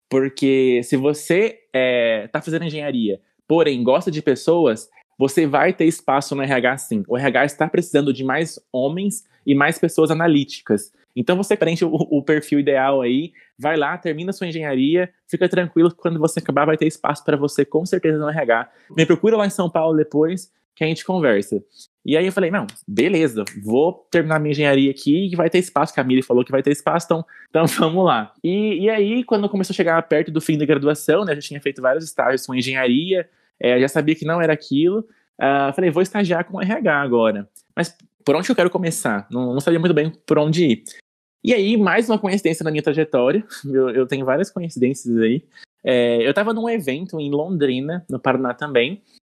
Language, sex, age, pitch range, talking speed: Portuguese, male, 20-39, 135-180 Hz, 200 wpm